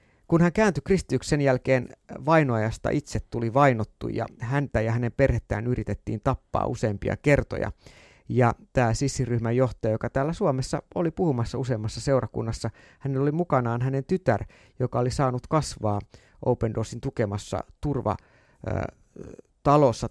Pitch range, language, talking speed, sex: 110-140 Hz, Finnish, 125 wpm, male